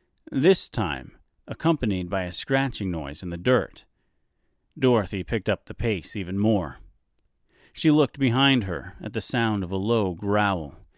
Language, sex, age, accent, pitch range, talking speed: English, male, 40-59, American, 95-125 Hz, 155 wpm